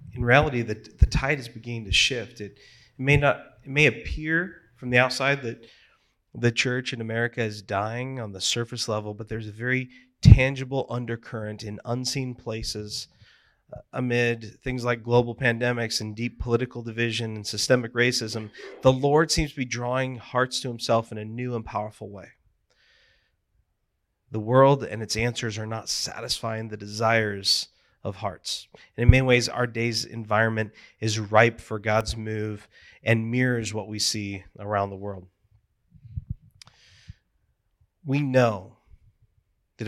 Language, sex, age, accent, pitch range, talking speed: English, male, 30-49, American, 105-120 Hz, 145 wpm